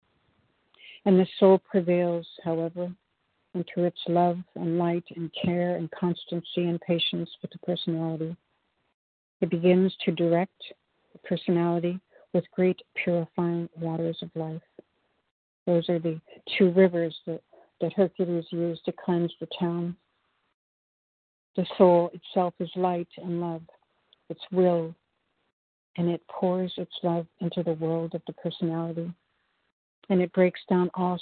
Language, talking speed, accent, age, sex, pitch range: English, 135 wpm, American, 60-79, female, 165-180 Hz